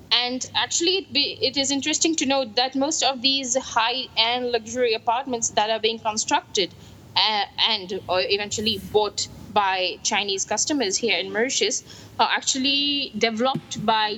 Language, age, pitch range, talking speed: English, 20-39, 205-290 Hz, 150 wpm